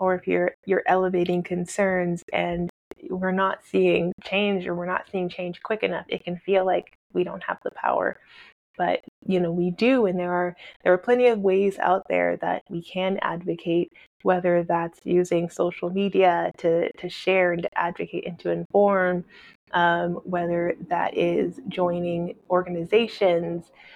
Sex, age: female, 20-39